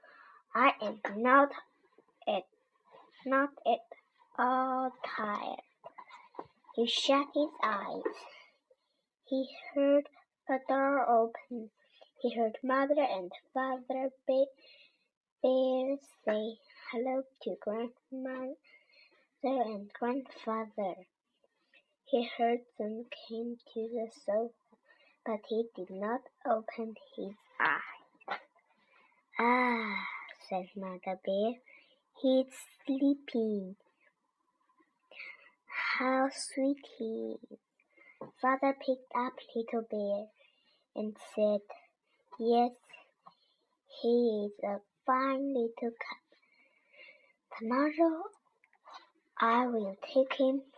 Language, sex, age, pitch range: Chinese, male, 20-39, 225-285 Hz